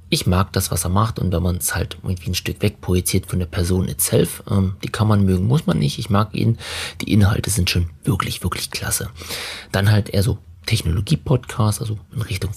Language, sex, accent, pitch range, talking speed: German, male, German, 90-110 Hz, 220 wpm